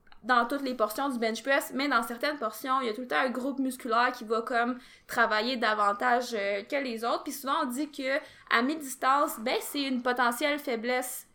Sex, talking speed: female, 215 wpm